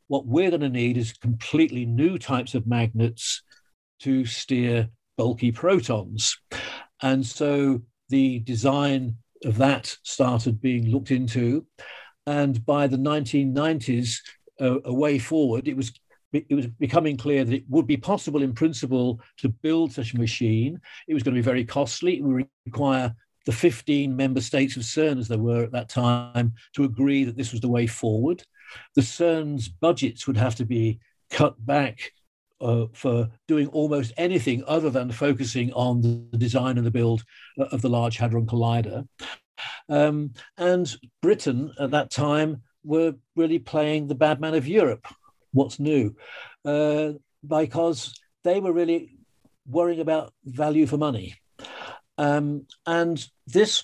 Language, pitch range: English, 120-150 Hz